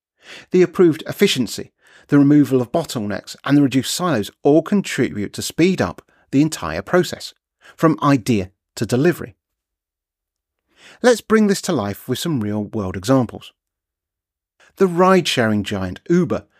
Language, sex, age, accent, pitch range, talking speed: English, male, 40-59, British, 105-160 Hz, 135 wpm